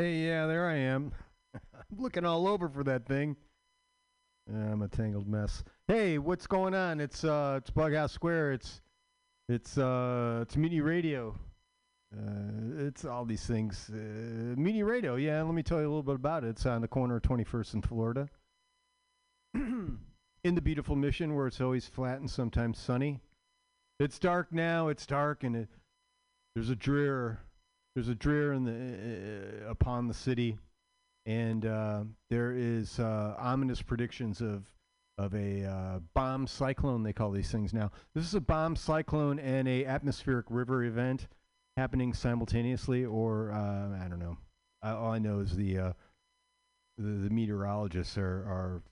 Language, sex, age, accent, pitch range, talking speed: English, male, 50-69, American, 105-160 Hz, 165 wpm